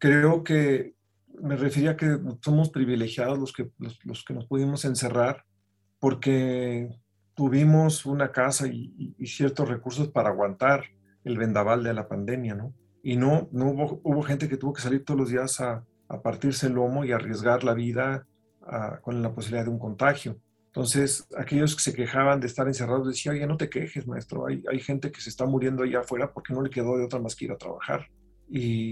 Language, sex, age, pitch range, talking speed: Spanish, male, 40-59, 120-140 Hz, 200 wpm